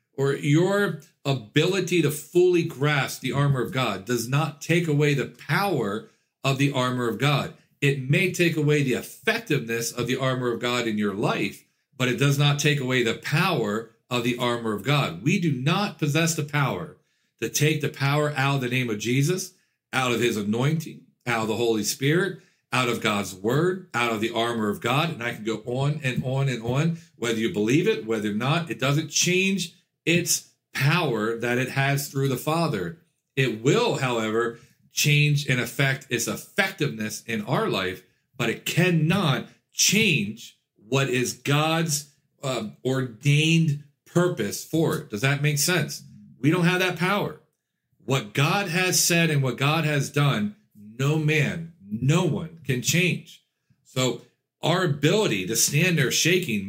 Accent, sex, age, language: American, male, 50-69, English